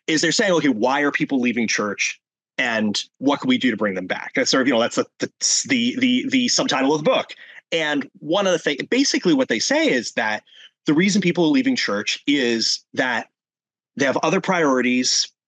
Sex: male